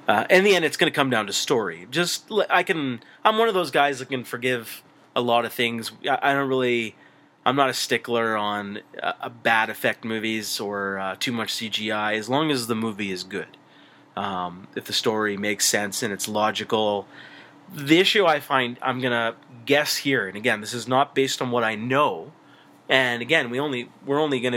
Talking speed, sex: 210 wpm, male